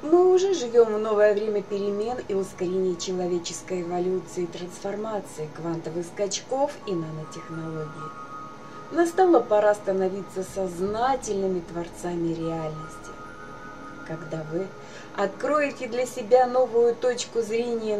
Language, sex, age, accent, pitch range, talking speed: Russian, female, 30-49, native, 175-235 Hz, 100 wpm